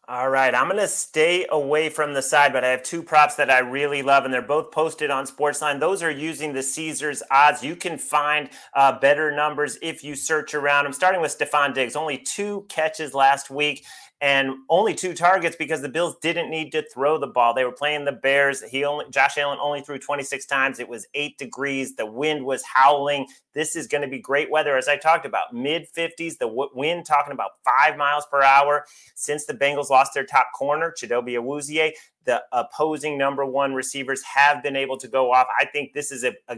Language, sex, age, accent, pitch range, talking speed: English, male, 30-49, American, 135-155 Hz, 215 wpm